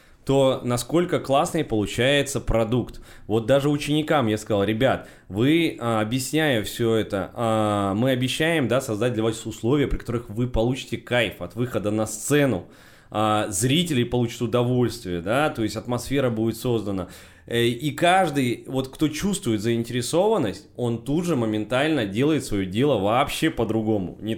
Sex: male